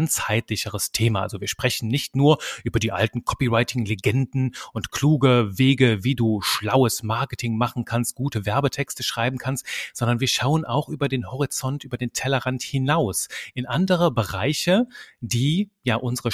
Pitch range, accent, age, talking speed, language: 110-140 Hz, German, 30-49, 155 wpm, German